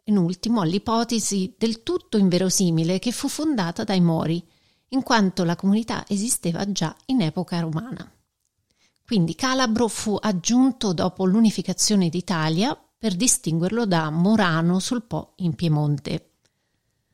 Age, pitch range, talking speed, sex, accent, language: 40-59, 180-235 Hz, 120 wpm, female, native, Italian